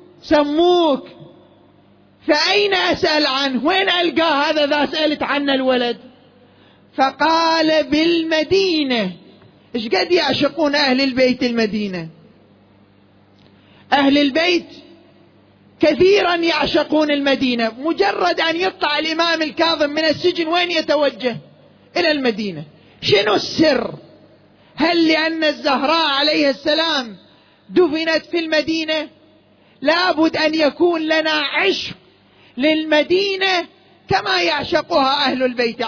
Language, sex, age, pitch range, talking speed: Arabic, male, 30-49, 250-320 Hz, 90 wpm